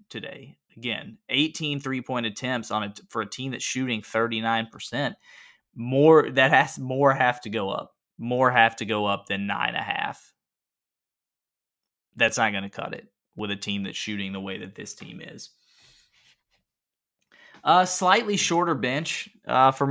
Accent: American